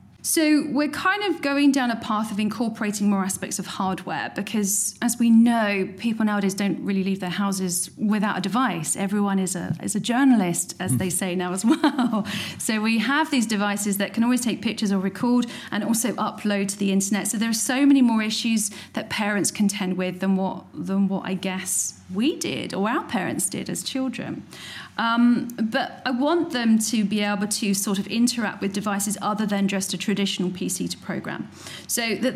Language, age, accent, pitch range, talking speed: English, 40-59, British, 195-240 Hz, 200 wpm